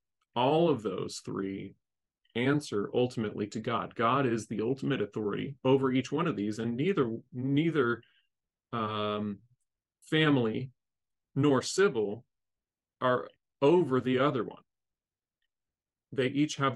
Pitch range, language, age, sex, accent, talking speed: 110-135 Hz, English, 40-59, male, American, 120 wpm